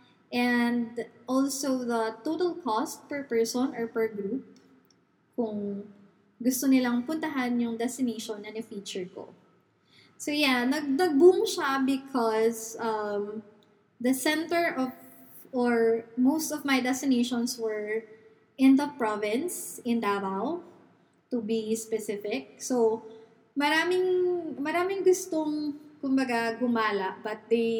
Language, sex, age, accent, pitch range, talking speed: English, female, 20-39, Filipino, 225-280 Hz, 110 wpm